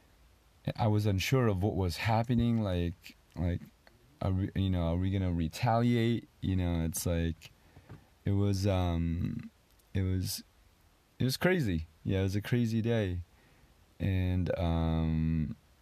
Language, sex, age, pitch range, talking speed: English, male, 30-49, 85-105 Hz, 145 wpm